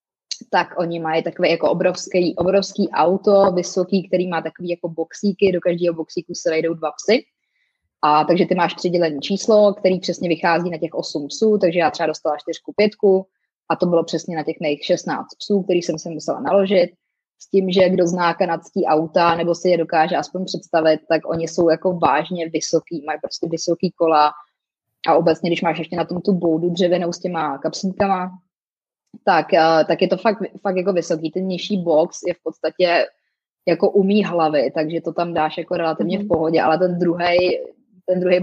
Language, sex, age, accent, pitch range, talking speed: Czech, female, 20-39, native, 165-185 Hz, 185 wpm